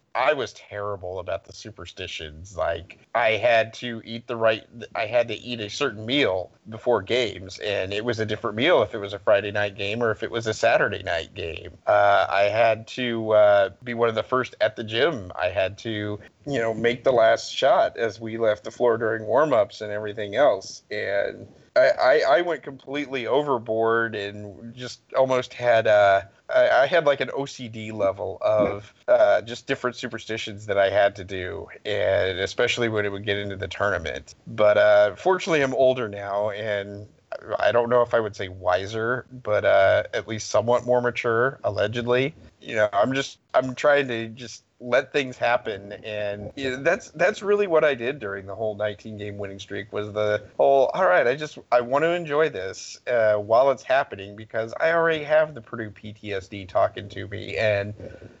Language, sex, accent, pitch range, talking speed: English, male, American, 105-125 Hz, 195 wpm